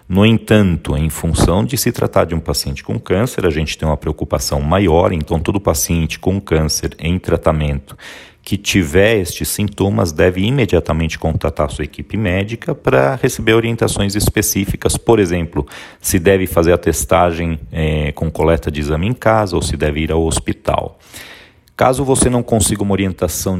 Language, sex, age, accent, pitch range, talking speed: Portuguese, male, 40-59, Brazilian, 80-100 Hz, 165 wpm